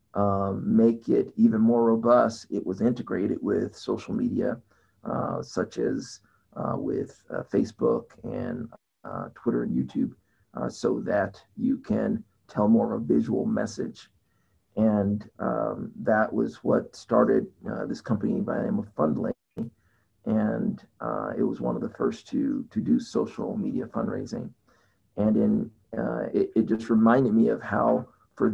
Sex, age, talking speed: male, 40-59, 155 wpm